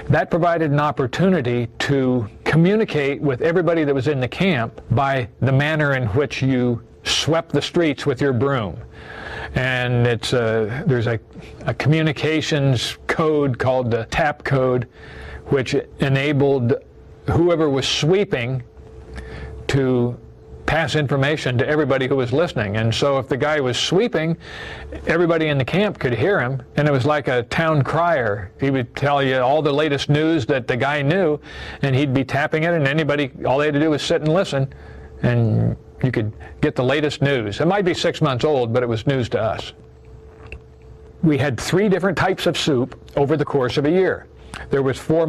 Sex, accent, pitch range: male, American, 125-155 Hz